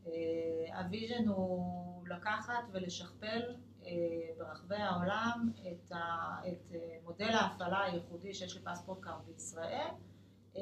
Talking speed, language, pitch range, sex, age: 115 wpm, Hebrew, 175-220 Hz, female, 30-49